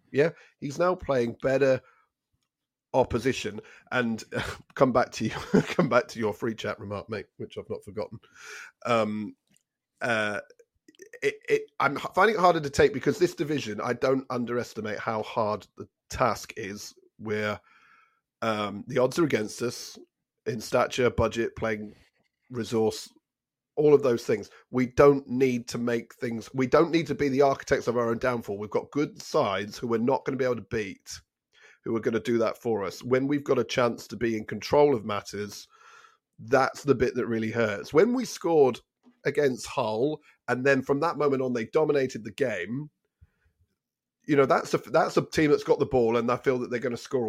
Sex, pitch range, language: male, 115-165 Hz, English